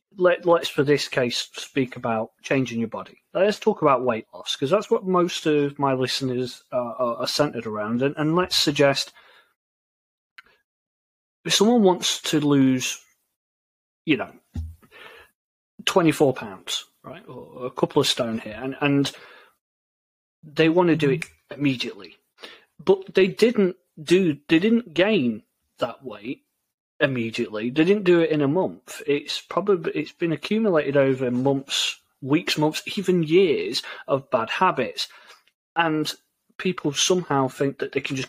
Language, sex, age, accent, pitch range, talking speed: English, male, 30-49, British, 130-180 Hz, 145 wpm